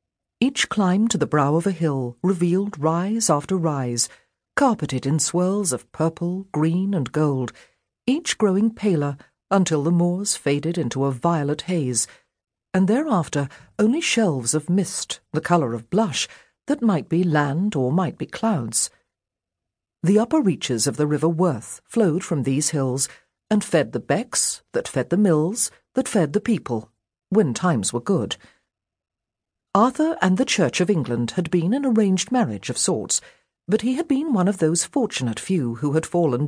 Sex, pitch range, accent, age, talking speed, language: female, 130-205 Hz, British, 50-69, 165 wpm, English